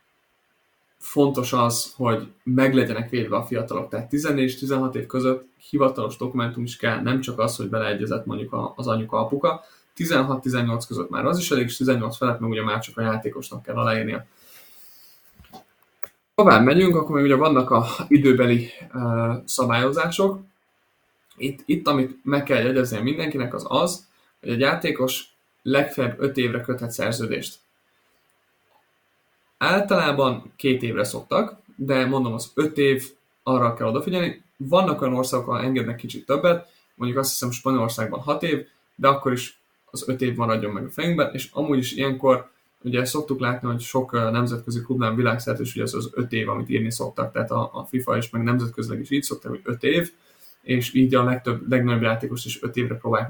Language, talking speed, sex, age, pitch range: Hungarian, 165 wpm, male, 20-39, 115-135 Hz